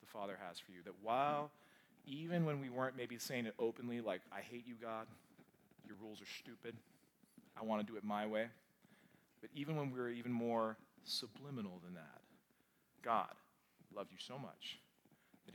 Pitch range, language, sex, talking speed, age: 105-130 Hz, English, male, 180 wpm, 30-49